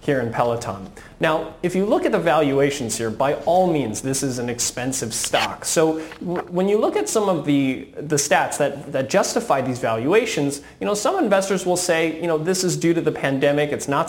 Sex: male